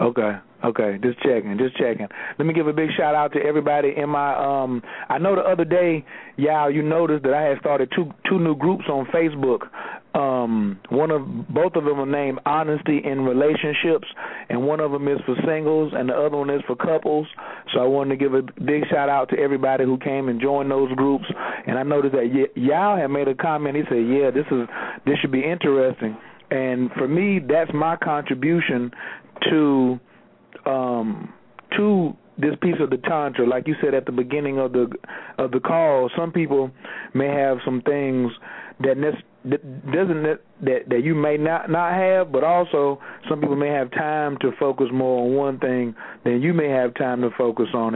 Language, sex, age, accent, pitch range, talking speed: English, male, 40-59, American, 130-155 Hz, 200 wpm